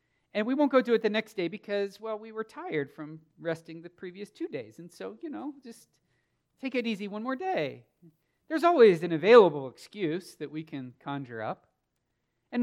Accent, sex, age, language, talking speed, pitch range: American, male, 40-59, English, 200 wpm, 155-225 Hz